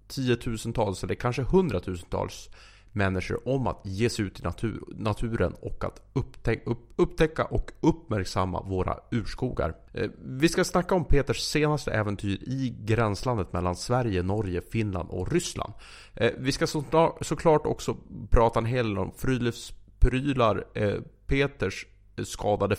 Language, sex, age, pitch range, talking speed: English, male, 30-49, 100-130 Hz, 120 wpm